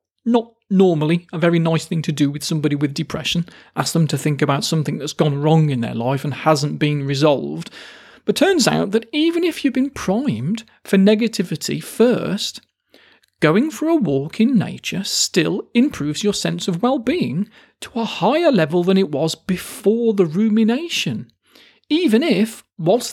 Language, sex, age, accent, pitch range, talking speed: English, male, 40-59, British, 160-230 Hz, 170 wpm